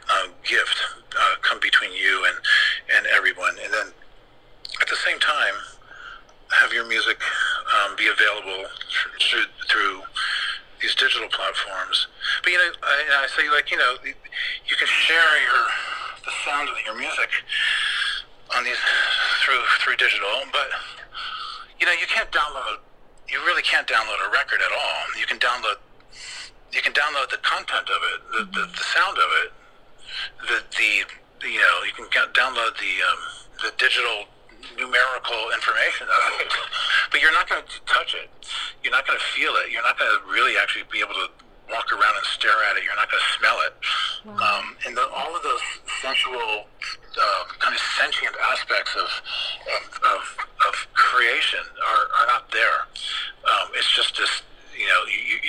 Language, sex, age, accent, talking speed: English, male, 50-69, American, 170 wpm